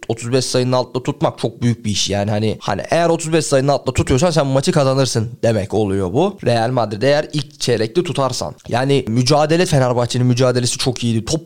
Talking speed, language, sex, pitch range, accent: 185 wpm, Turkish, male, 120-155 Hz, native